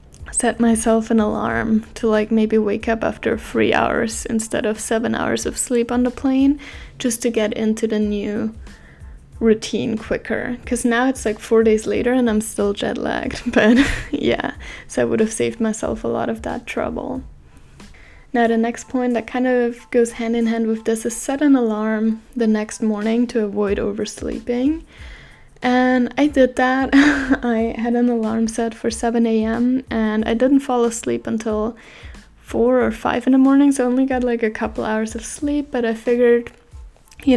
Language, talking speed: English, 185 wpm